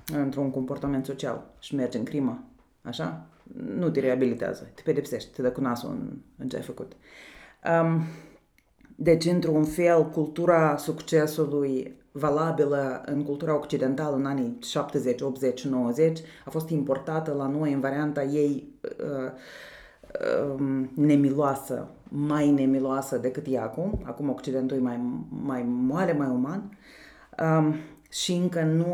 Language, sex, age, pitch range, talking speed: Romanian, female, 30-49, 135-160 Hz, 135 wpm